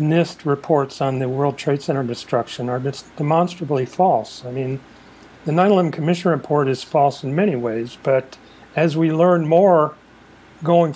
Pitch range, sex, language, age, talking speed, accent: 130-165 Hz, male, English, 40-59, 160 wpm, American